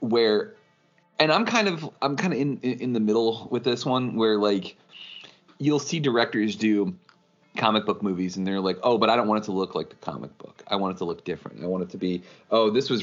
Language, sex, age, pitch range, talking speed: English, male, 30-49, 100-155 Hz, 250 wpm